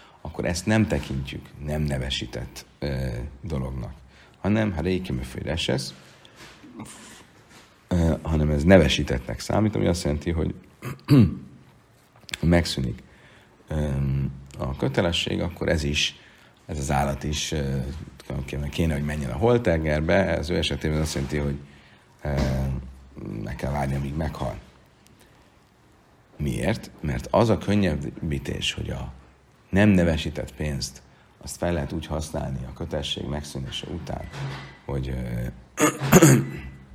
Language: Hungarian